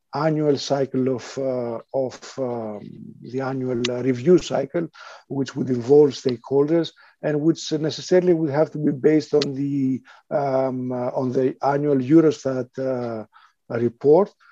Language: Danish